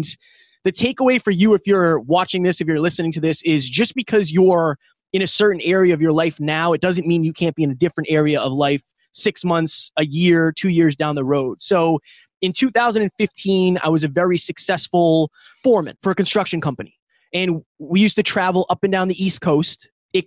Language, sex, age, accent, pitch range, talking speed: English, male, 20-39, American, 160-205 Hz, 210 wpm